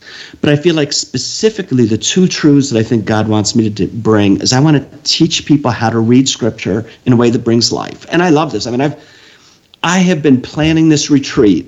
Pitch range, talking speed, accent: 110-150 Hz, 230 wpm, American